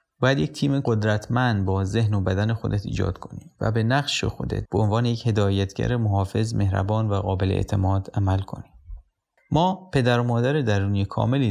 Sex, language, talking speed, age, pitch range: male, Persian, 165 wpm, 30-49, 100-125 Hz